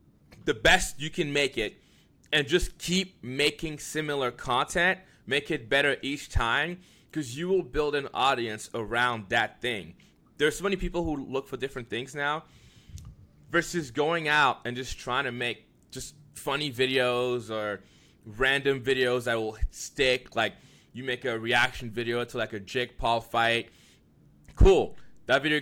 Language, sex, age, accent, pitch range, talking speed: English, male, 20-39, American, 115-145 Hz, 160 wpm